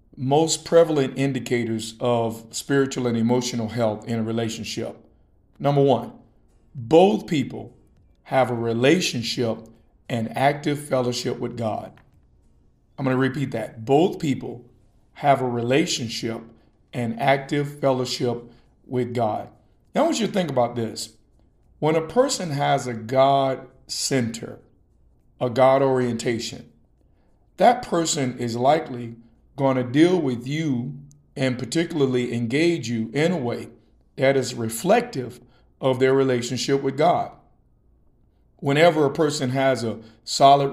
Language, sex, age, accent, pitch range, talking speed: English, male, 50-69, American, 115-140 Hz, 125 wpm